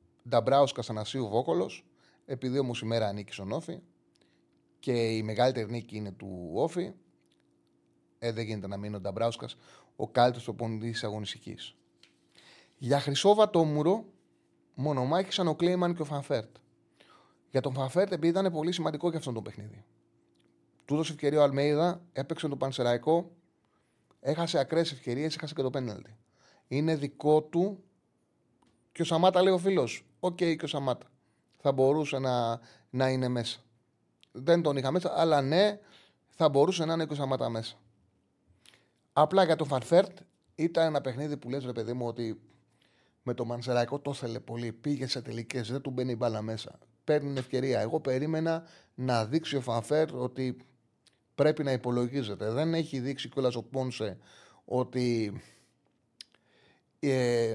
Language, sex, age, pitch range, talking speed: Greek, male, 30-49, 115-155 Hz, 145 wpm